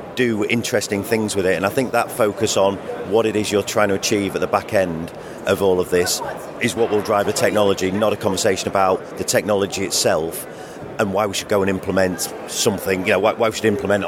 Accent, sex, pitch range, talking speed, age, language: British, male, 95-110 Hz, 230 wpm, 40-59, English